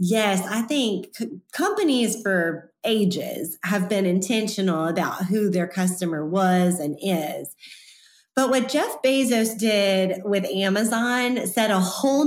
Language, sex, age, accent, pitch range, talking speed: English, female, 30-49, American, 185-230 Hz, 125 wpm